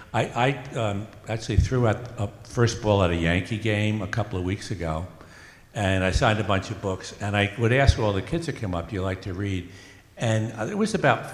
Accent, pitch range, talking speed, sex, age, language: American, 95-120 Hz, 235 wpm, male, 60-79, English